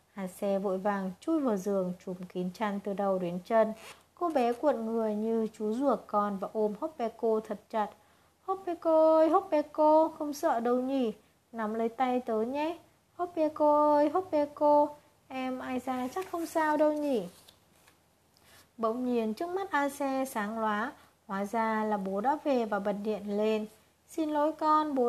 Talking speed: 185 wpm